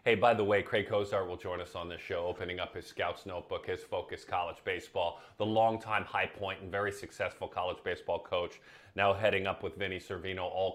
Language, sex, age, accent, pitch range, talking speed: English, male, 30-49, American, 100-120 Hz, 210 wpm